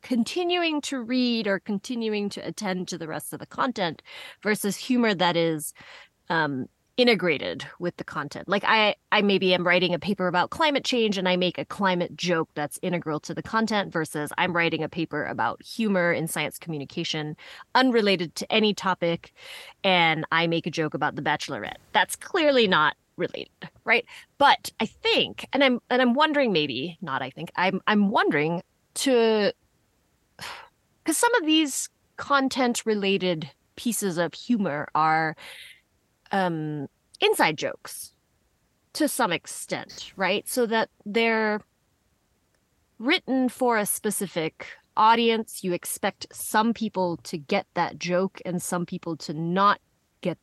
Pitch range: 160-230 Hz